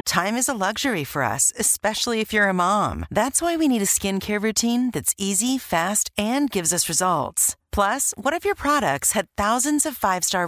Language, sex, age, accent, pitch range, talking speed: English, female, 40-59, American, 190-255 Hz, 195 wpm